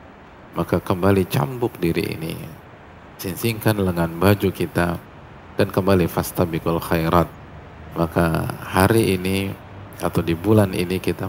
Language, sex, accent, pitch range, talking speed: Indonesian, male, native, 85-100 Hz, 110 wpm